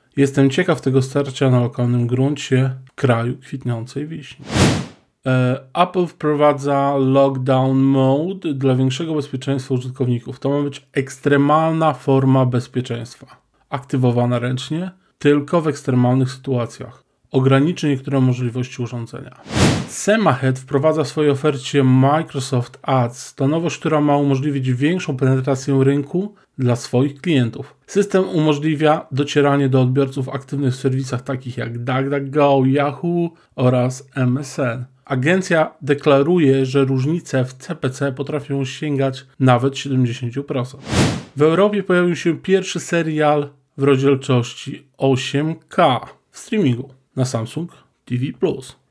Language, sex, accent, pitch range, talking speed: Polish, male, native, 130-150 Hz, 110 wpm